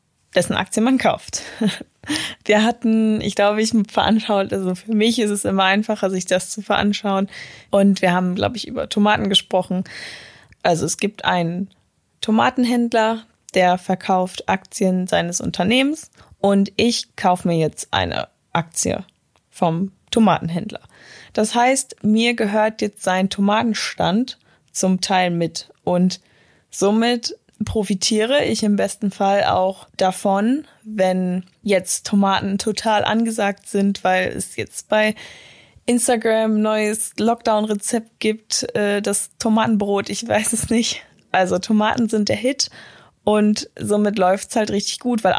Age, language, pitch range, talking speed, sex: 20-39, German, 190-220 Hz, 130 wpm, female